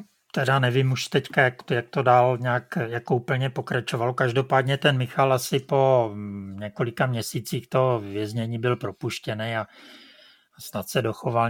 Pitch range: 105-130 Hz